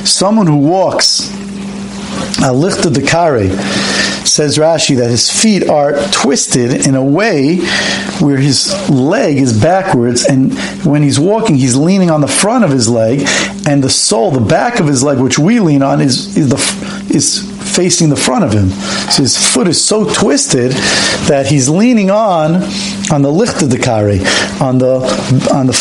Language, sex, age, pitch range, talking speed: English, male, 50-69, 130-195 Hz, 175 wpm